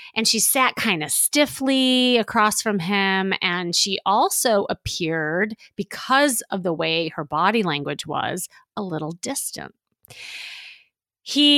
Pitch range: 175-235 Hz